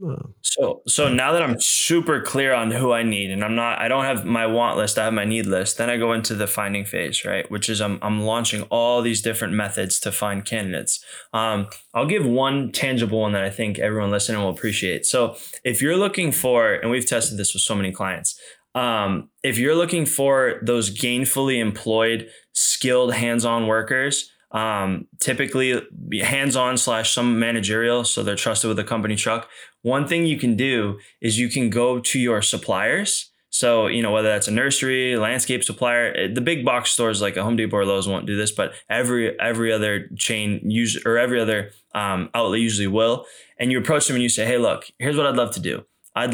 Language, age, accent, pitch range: English, 20-39, American, 105-125 Hz